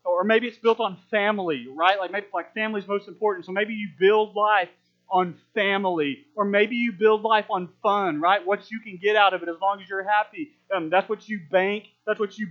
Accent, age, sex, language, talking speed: American, 40-59, male, English, 230 wpm